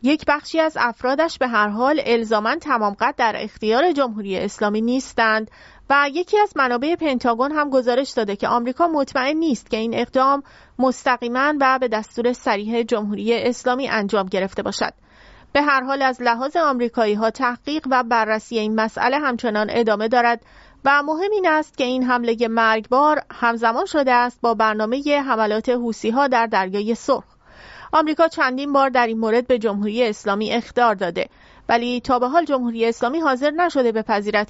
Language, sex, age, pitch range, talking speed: English, female, 30-49, 225-280 Hz, 165 wpm